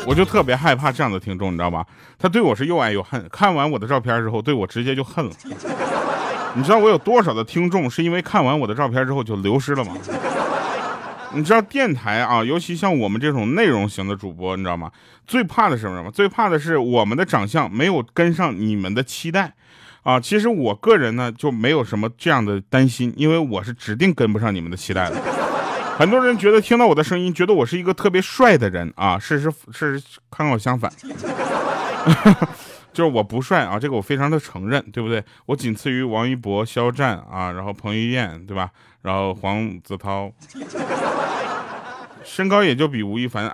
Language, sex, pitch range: Chinese, male, 100-160 Hz